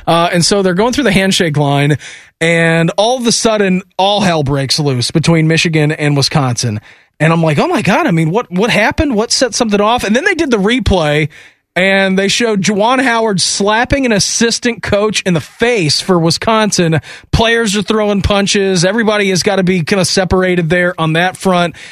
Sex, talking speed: male, 200 wpm